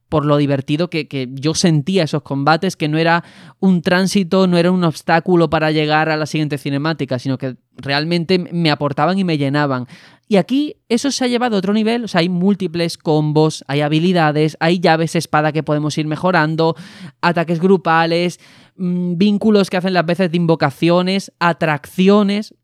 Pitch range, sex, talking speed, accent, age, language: 150-185 Hz, male, 165 wpm, Spanish, 20-39, Spanish